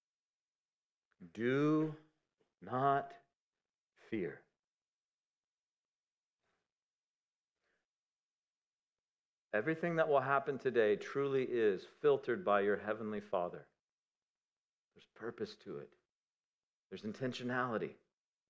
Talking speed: 70 wpm